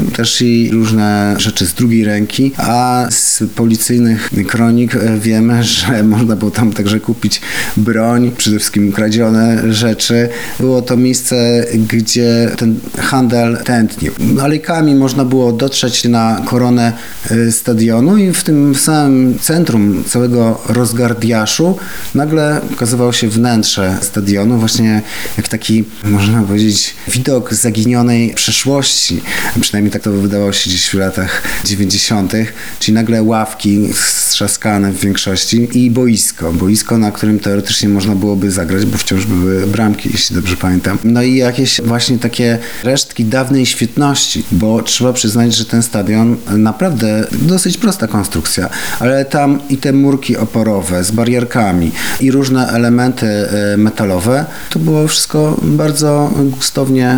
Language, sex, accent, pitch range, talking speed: Polish, male, native, 105-125 Hz, 130 wpm